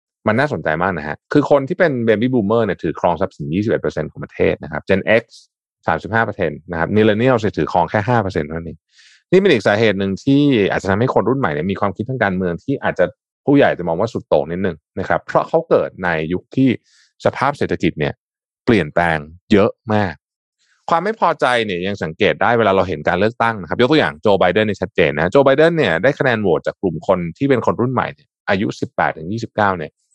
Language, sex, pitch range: Thai, male, 90-130 Hz